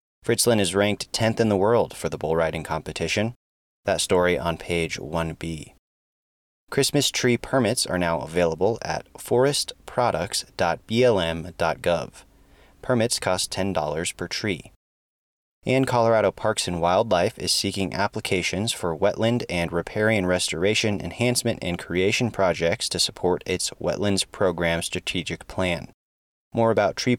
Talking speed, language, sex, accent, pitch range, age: 125 wpm, English, male, American, 85-115 Hz, 30-49